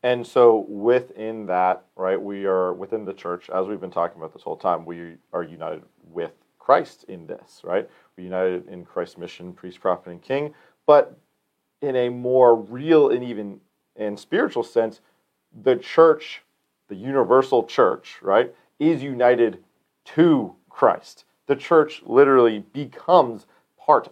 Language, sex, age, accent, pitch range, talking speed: English, male, 40-59, American, 100-140 Hz, 150 wpm